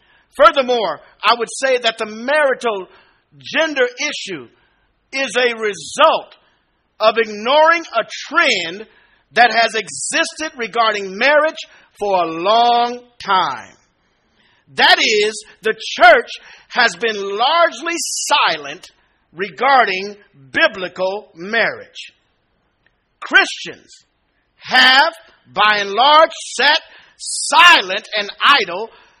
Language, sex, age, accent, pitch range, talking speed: English, male, 50-69, American, 200-275 Hz, 90 wpm